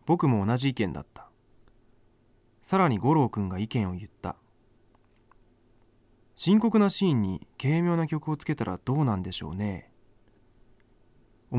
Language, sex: Japanese, male